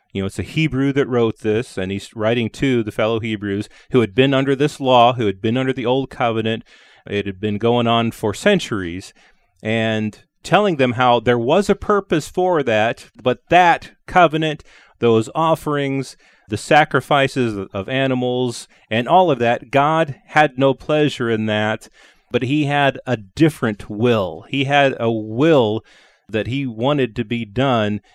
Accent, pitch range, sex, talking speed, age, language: American, 105-130 Hz, male, 170 wpm, 30-49, English